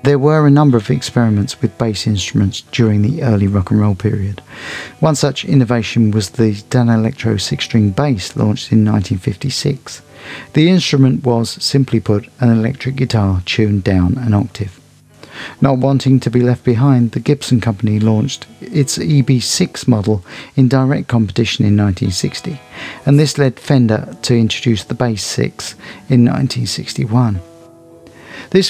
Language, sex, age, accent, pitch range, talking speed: English, male, 50-69, British, 110-140 Hz, 145 wpm